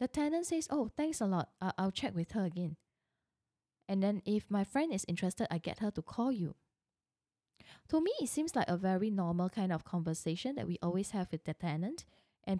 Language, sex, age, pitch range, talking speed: English, female, 10-29, 165-250 Hz, 210 wpm